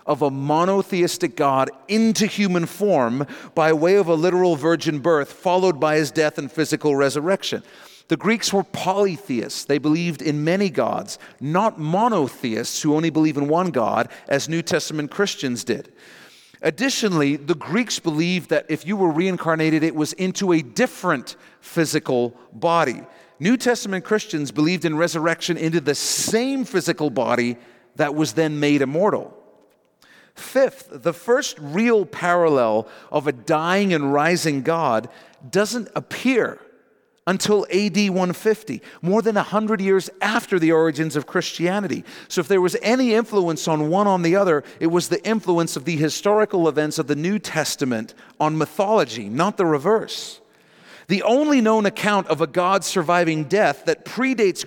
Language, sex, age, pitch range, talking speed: English, male, 40-59, 155-200 Hz, 155 wpm